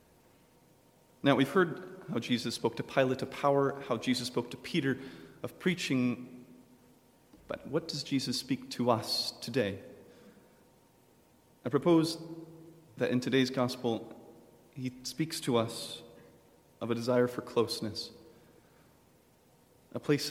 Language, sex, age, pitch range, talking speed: English, male, 30-49, 120-145 Hz, 125 wpm